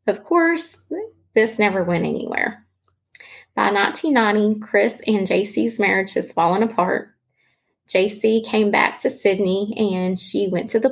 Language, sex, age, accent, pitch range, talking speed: English, female, 20-39, American, 185-230 Hz, 135 wpm